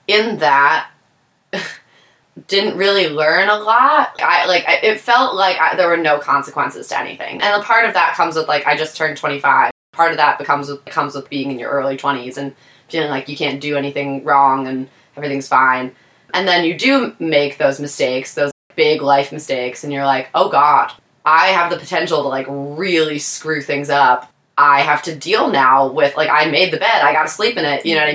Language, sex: English, female